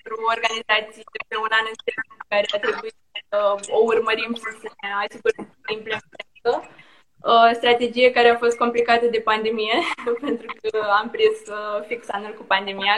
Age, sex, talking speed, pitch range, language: 20-39, female, 155 wpm, 210-250 Hz, Romanian